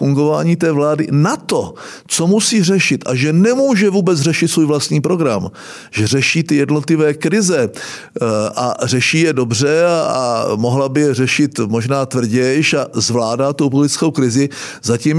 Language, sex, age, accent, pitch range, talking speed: Czech, male, 50-69, native, 135-175 Hz, 150 wpm